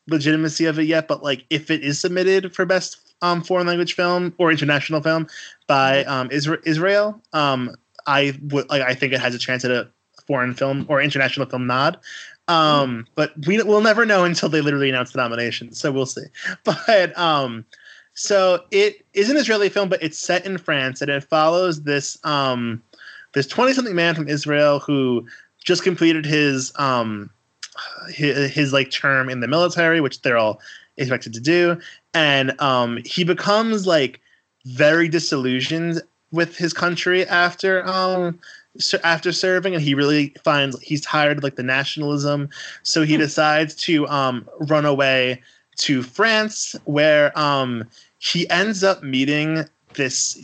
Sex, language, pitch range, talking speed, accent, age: male, English, 135-175 Hz, 160 wpm, American, 20-39